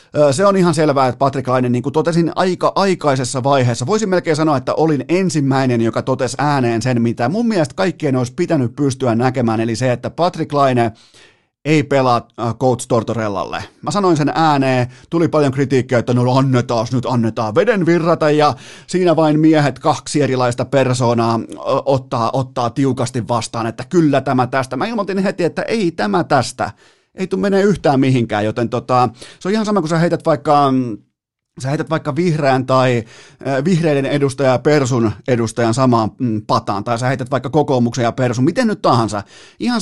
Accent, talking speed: native, 175 wpm